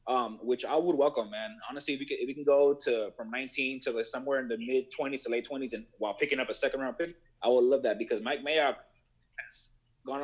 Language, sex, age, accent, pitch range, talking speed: English, male, 30-49, American, 125-150 Hz, 260 wpm